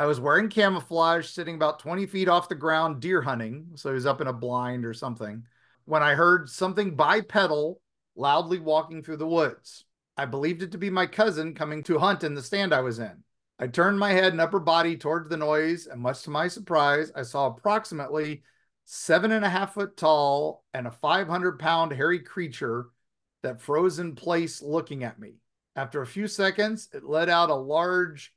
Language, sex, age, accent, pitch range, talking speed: English, male, 50-69, American, 140-180 Hz, 195 wpm